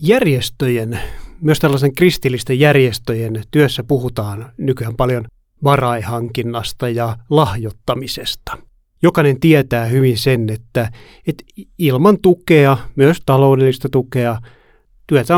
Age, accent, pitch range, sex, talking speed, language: 30-49, native, 115-150 Hz, male, 95 wpm, Finnish